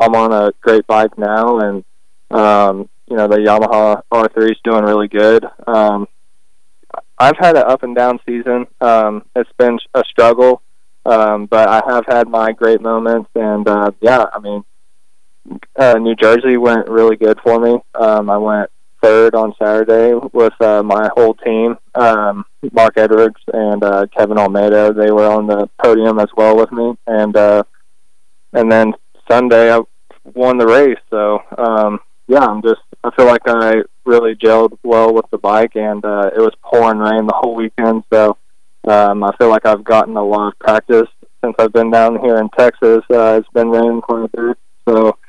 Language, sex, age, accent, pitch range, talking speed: English, male, 20-39, American, 105-115 Hz, 180 wpm